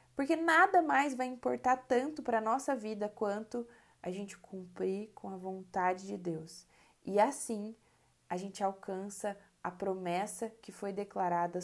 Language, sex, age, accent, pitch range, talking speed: Portuguese, female, 20-39, Brazilian, 180-225 Hz, 150 wpm